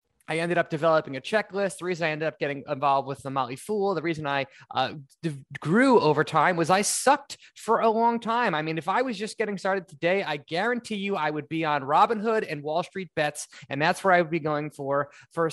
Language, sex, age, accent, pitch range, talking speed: English, male, 20-39, American, 140-185 Hz, 240 wpm